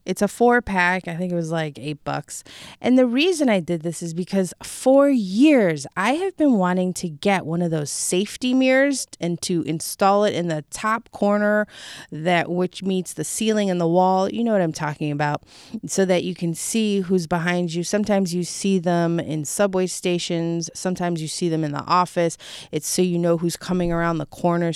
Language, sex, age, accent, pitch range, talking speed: English, female, 20-39, American, 165-230 Hz, 205 wpm